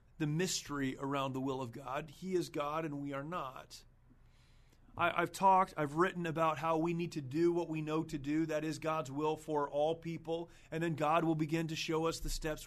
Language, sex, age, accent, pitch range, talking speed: English, male, 30-49, American, 135-180 Hz, 225 wpm